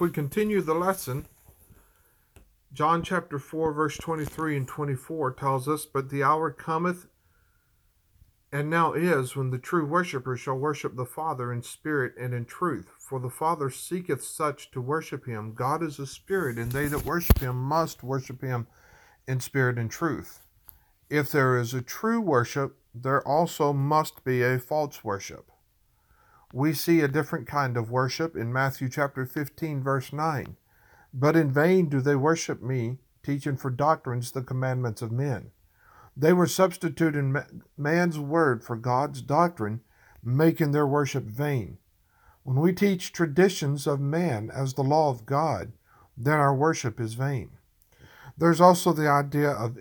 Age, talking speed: 50-69, 155 wpm